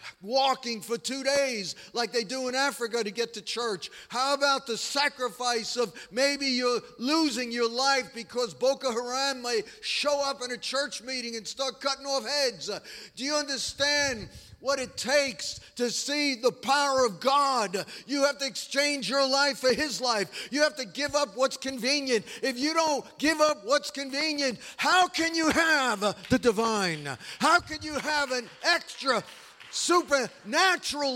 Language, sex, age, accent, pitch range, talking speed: English, male, 50-69, American, 235-285 Hz, 165 wpm